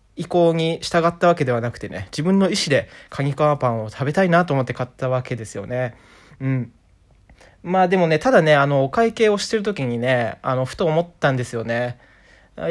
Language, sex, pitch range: Japanese, male, 125-180 Hz